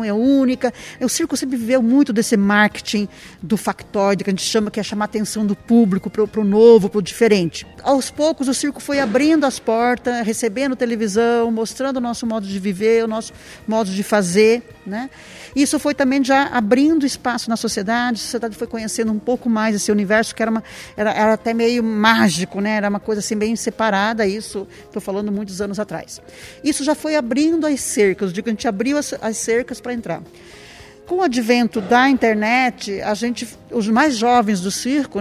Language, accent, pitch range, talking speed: Portuguese, Brazilian, 215-260 Hz, 195 wpm